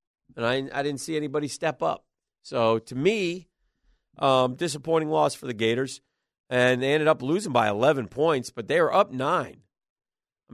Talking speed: 175 wpm